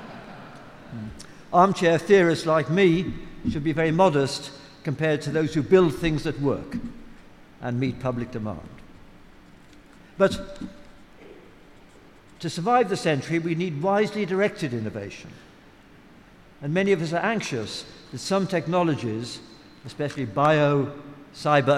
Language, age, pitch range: English, 60-79, 135-170 Hz